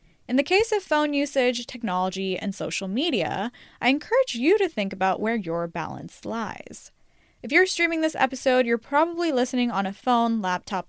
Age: 10-29